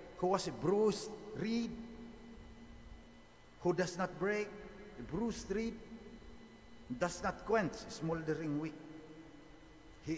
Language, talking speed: English, 110 wpm